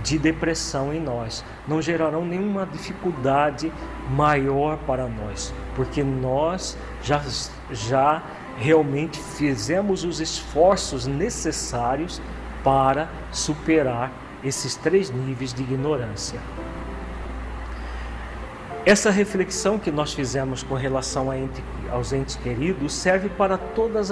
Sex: male